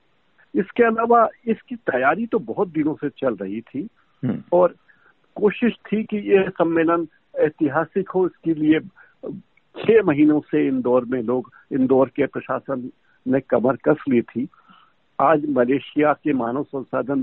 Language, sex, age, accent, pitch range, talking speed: Hindi, male, 50-69, native, 130-210 Hz, 140 wpm